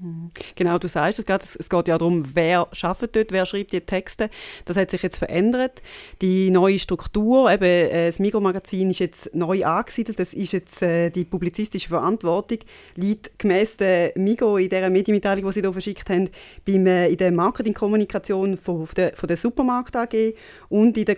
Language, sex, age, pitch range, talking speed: German, female, 30-49, 180-210 Hz, 160 wpm